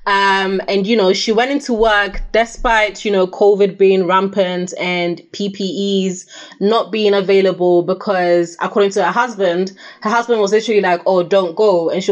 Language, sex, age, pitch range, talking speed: English, female, 20-39, 185-220 Hz, 170 wpm